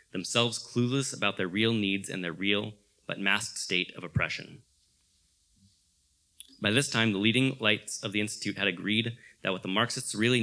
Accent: American